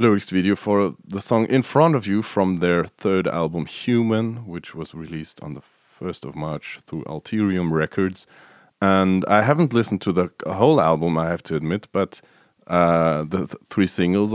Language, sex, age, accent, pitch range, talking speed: English, male, 30-49, Norwegian, 85-110 Hz, 180 wpm